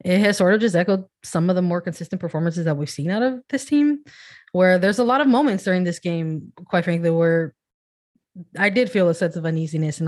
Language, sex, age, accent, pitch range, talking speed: English, female, 20-39, American, 160-190 Hz, 230 wpm